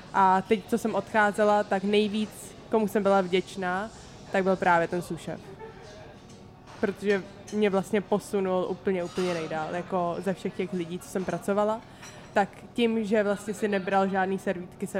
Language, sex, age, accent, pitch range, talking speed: Czech, female, 20-39, native, 185-210 Hz, 155 wpm